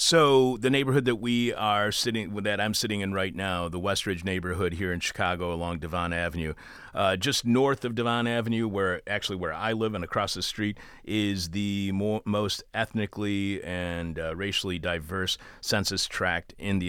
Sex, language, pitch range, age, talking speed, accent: male, English, 90-115 Hz, 40-59, 175 wpm, American